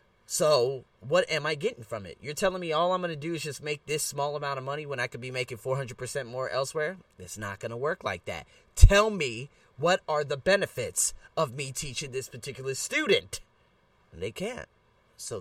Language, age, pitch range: English, 30-49, 140-220 Hz